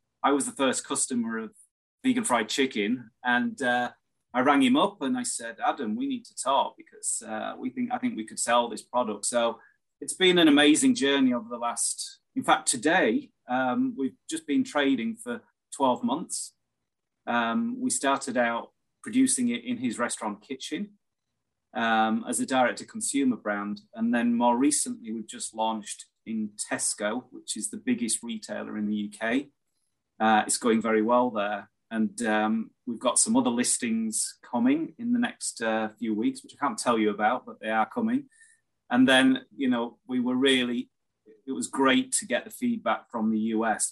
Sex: male